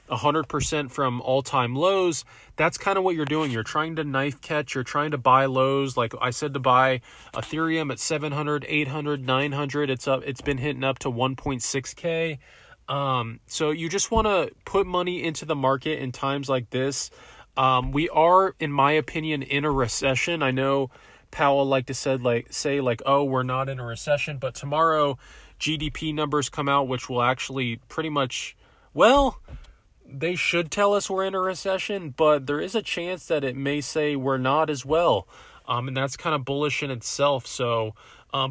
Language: English